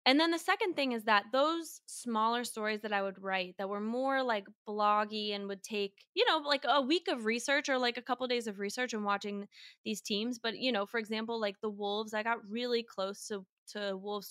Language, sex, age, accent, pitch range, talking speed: English, female, 20-39, American, 200-245 Hz, 230 wpm